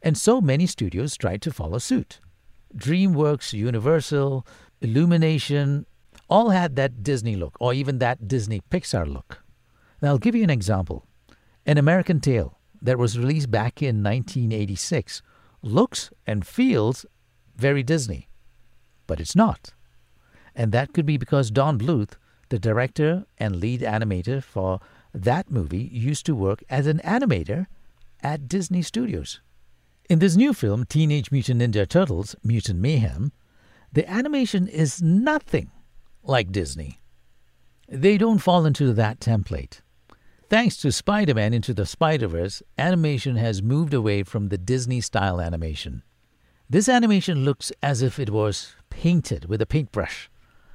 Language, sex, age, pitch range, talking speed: English, male, 60-79, 105-155 Hz, 135 wpm